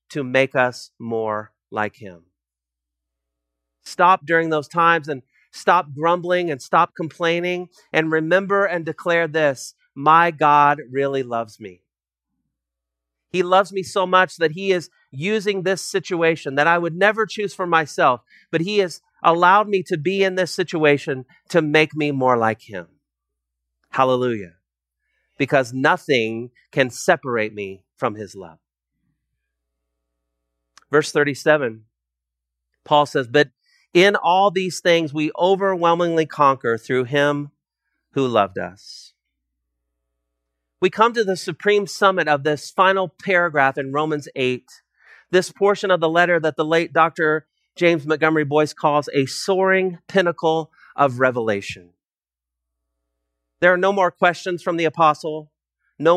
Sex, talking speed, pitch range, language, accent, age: male, 135 wpm, 115-175 Hz, English, American, 40-59